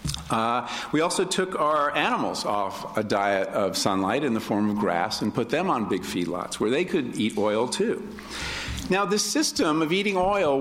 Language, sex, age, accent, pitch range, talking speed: English, male, 50-69, American, 110-165 Hz, 190 wpm